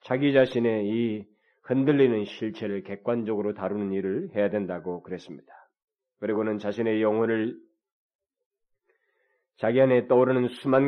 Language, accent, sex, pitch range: Korean, native, male, 105-125 Hz